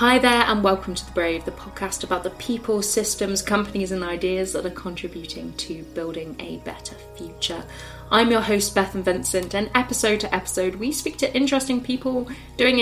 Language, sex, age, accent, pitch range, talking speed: English, female, 20-39, British, 195-245 Hz, 185 wpm